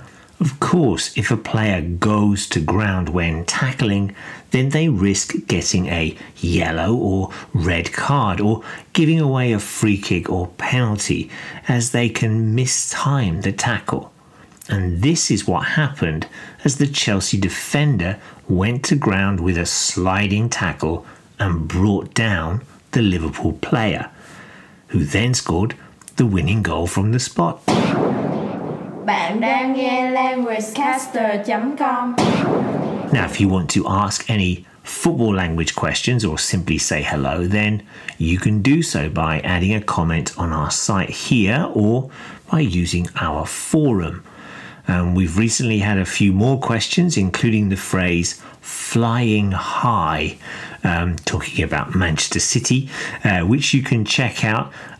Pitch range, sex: 90-130 Hz, male